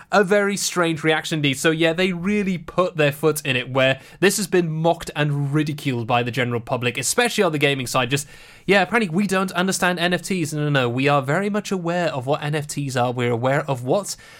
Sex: male